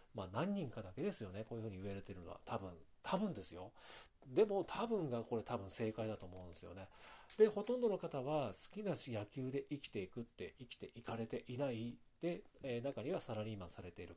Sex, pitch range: male, 105-150 Hz